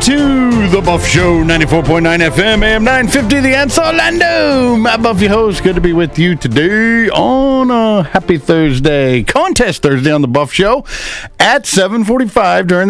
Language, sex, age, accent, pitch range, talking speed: English, male, 50-69, American, 155-220 Hz, 155 wpm